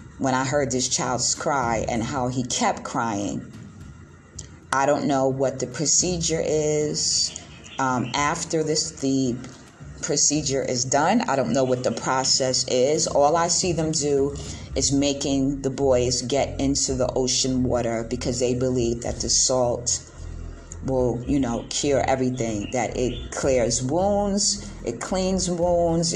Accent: American